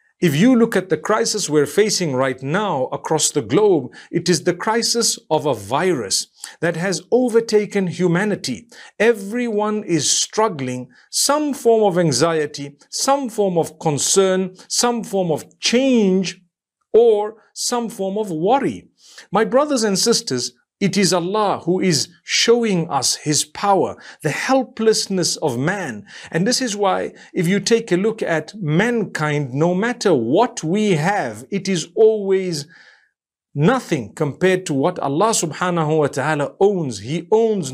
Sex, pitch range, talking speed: male, 155-220 Hz, 145 wpm